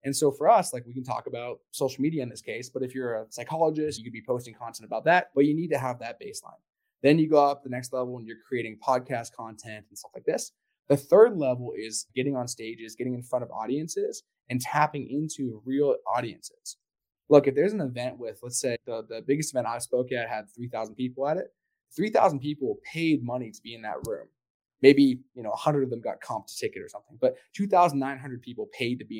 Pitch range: 120-155 Hz